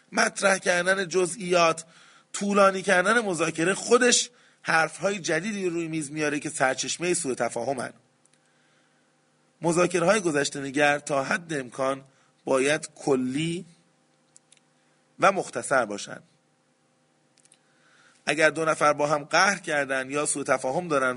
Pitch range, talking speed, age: 140-180 Hz, 110 wpm, 30-49